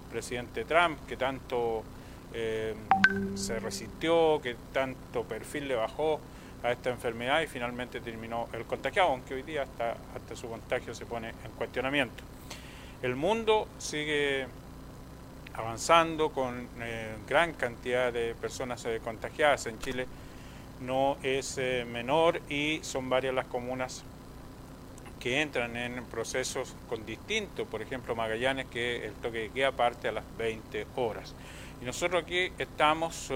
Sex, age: male, 40-59